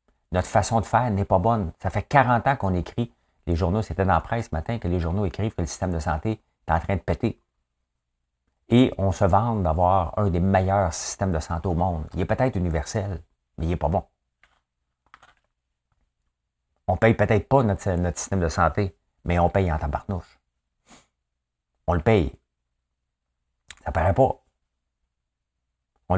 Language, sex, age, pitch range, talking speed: French, male, 50-69, 65-100 Hz, 185 wpm